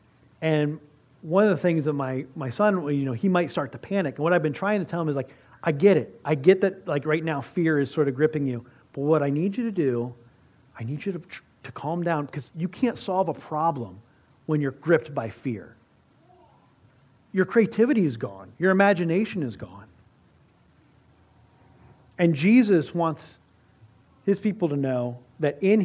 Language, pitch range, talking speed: English, 130-190 Hz, 195 wpm